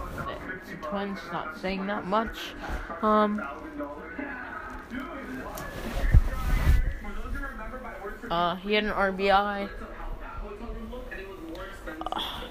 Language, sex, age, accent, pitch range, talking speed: English, female, 20-39, American, 175-215 Hz, 60 wpm